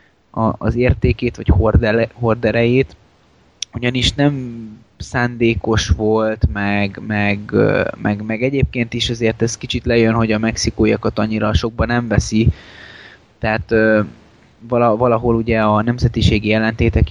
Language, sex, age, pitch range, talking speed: Hungarian, male, 20-39, 110-120 Hz, 100 wpm